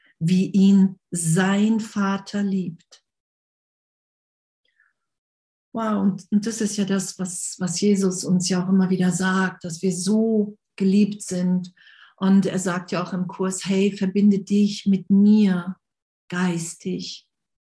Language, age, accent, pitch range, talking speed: German, 50-69, German, 180-200 Hz, 135 wpm